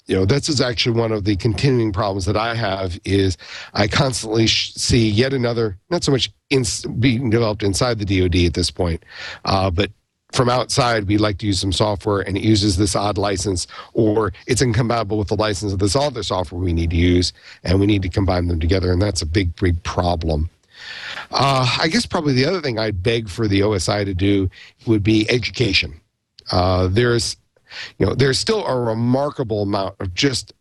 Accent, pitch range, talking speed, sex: American, 100-130 Hz, 200 wpm, male